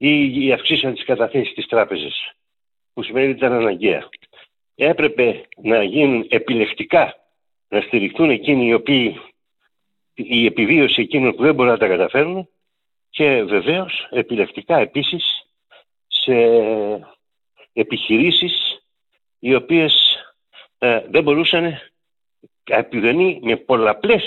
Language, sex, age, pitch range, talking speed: Greek, male, 60-79, 115-155 Hz, 125 wpm